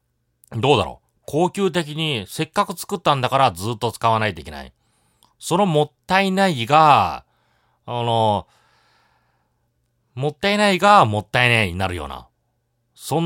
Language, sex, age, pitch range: Japanese, male, 30-49, 95-145 Hz